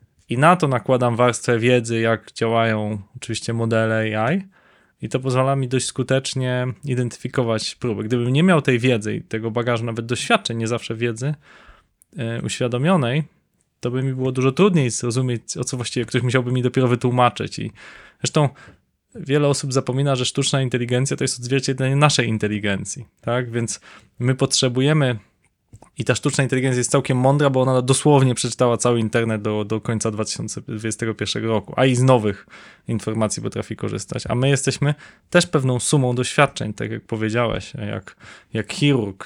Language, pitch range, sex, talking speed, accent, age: Polish, 115-135 Hz, male, 155 wpm, native, 20-39